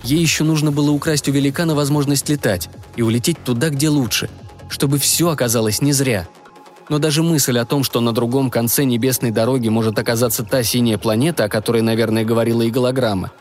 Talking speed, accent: 185 wpm, native